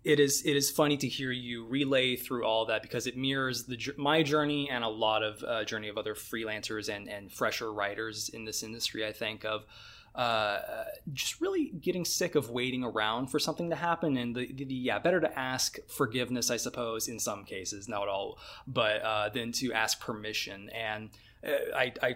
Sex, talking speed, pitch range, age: male, 200 wpm, 110-135 Hz, 20-39